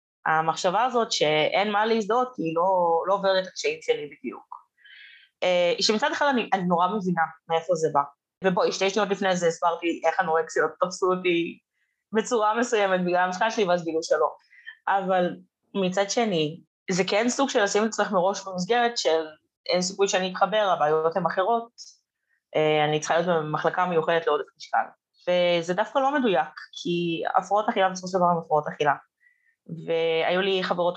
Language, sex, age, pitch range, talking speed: Hebrew, female, 20-39, 165-225 Hz, 160 wpm